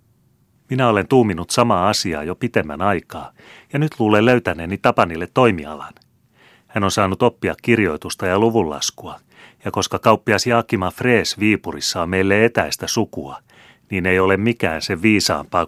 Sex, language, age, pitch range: male, Finnish, 30-49, 90-115 Hz